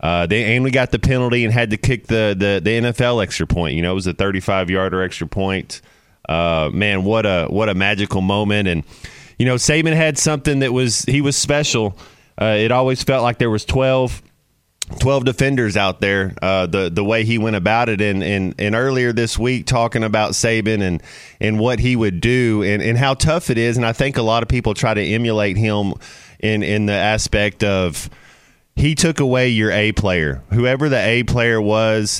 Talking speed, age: 210 wpm, 30-49